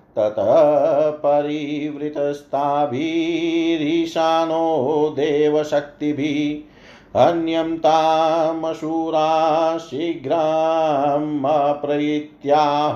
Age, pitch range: 50-69, 150-160 Hz